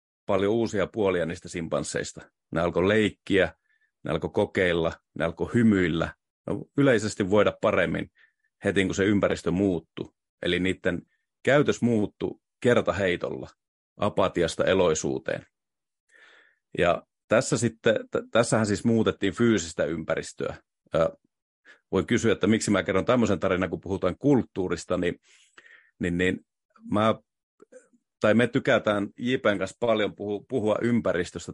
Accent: native